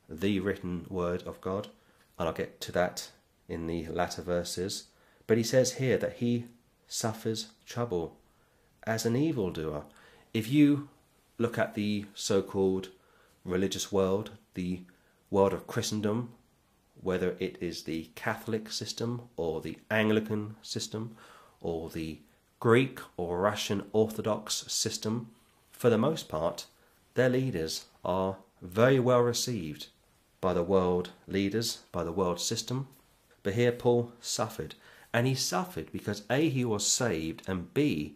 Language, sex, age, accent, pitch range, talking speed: English, male, 40-59, British, 95-115 Hz, 135 wpm